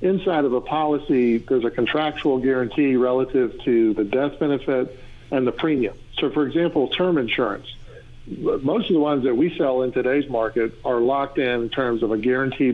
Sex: male